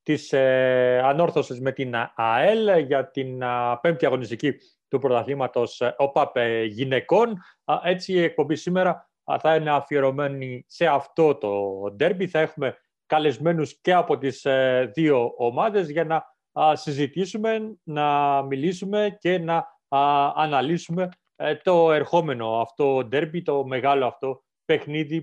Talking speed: 135 wpm